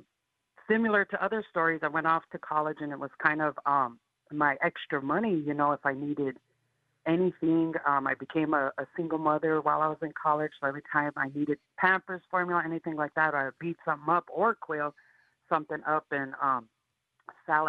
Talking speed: 190 wpm